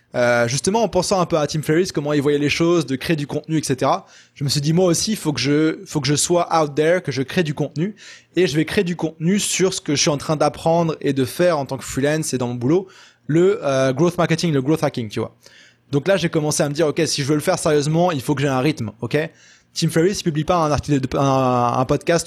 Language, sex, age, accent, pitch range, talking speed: French, male, 20-39, French, 135-165 Hz, 285 wpm